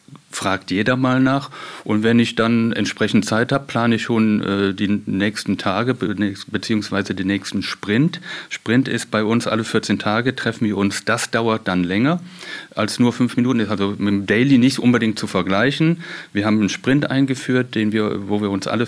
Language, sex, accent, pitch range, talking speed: German, male, German, 100-125 Hz, 190 wpm